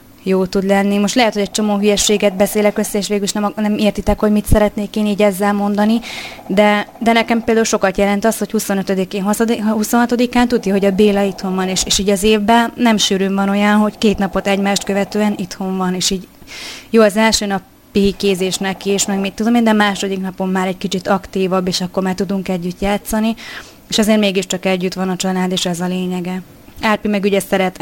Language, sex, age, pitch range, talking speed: Hungarian, female, 20-39, 190-210 Hz, 205 wpm